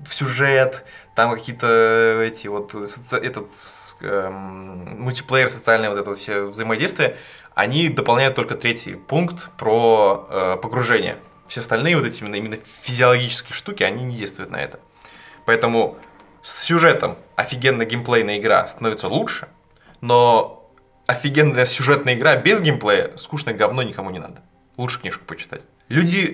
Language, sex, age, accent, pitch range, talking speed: Russian, male, 20-39, native, 110-135 Hz, 130 wpm